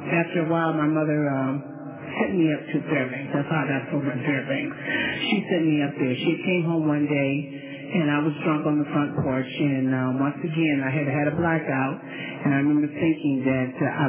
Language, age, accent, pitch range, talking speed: English, 40-59, American, 140-175 Hz, 215 wpm